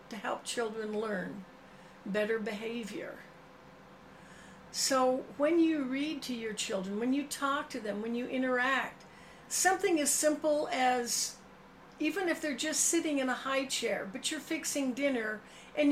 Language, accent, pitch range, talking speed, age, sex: English, American, 225-290 Hz, 145 wpm, 60-79, female